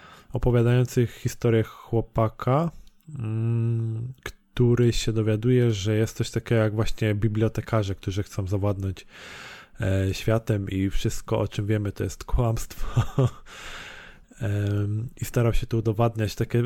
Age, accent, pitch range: 20-39, native, 105-120 Hz